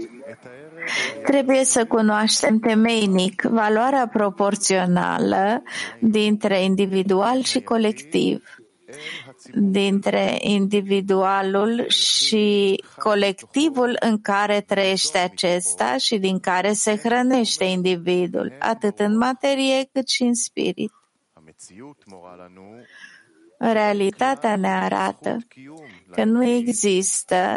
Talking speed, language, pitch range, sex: 80 wpm, English, 190-225 Hz, female